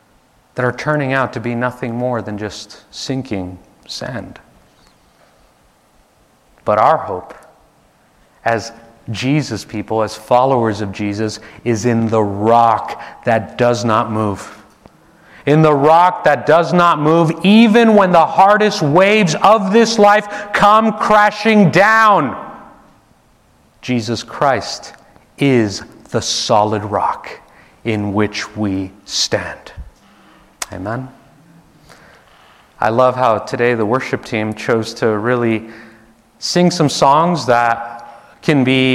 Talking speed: 115 wpm